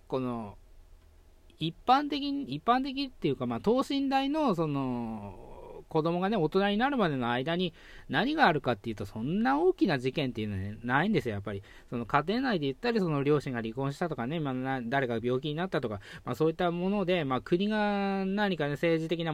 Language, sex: Japanese, male